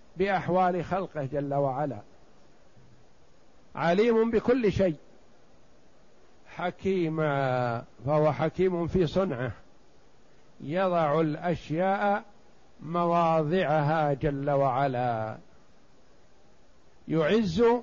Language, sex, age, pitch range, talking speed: Arabic, male, 60-79, 165-205 Hz, 60 wpm